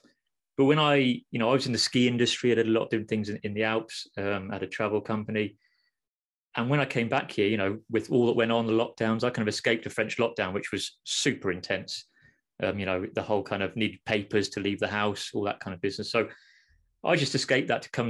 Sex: male